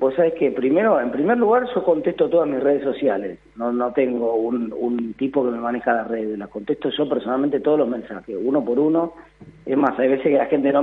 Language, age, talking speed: Spanish, 40-59, 235 wpm